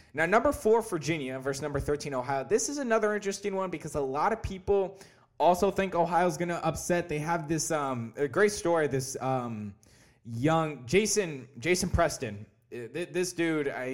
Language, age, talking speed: English, 20-39, 175 wpm